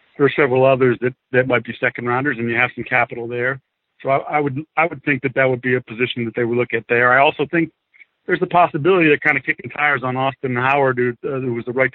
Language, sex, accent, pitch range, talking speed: English, male, American, 125-145 Hz, 275 wpm